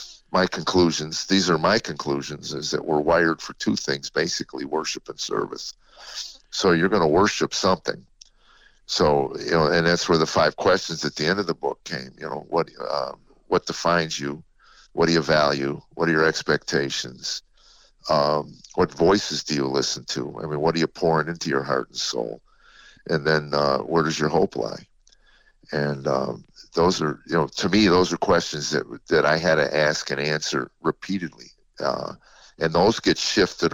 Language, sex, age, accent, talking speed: English, male, 50-69, American, 185 wpm